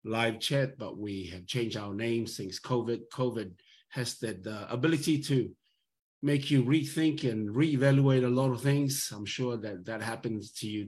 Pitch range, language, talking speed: 105-130 Hz, English, 175 wpm